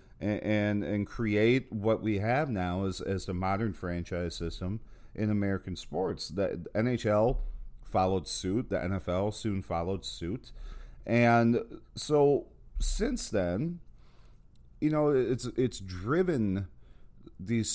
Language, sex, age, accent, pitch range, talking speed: English, male, 40-59, American, 85-115 Hz, 120 wpm